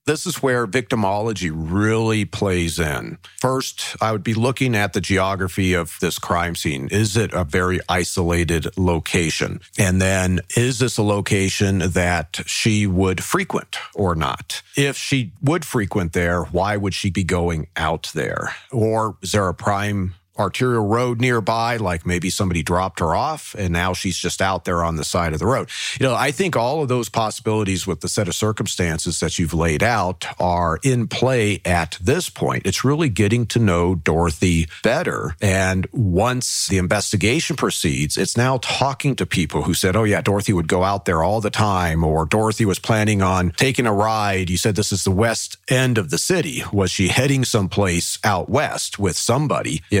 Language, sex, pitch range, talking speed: English, male, 90-115 Hz, 185 wpm